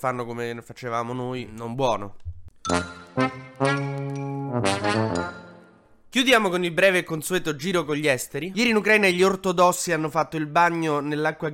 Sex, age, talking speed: male, 20-39, 135 wpm